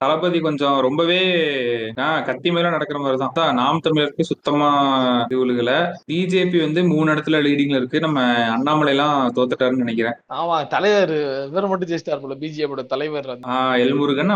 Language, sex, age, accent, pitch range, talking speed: Tamil, male, 20-39, native, 125-170 Hz, 65 wpm